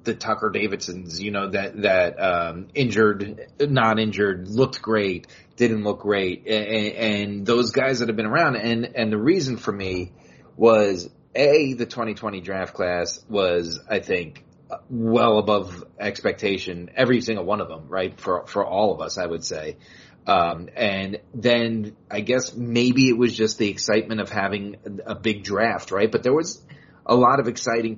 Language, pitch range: English, 100-120 Hz